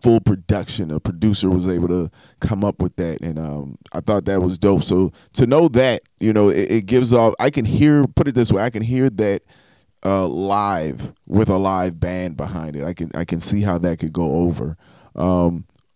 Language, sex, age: English, male, 20-39